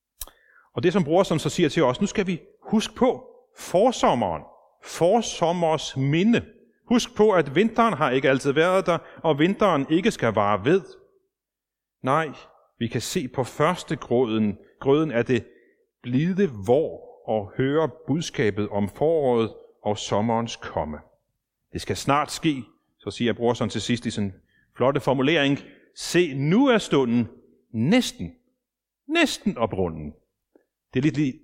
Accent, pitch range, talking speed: native, 120-180 Hz, 145 wpm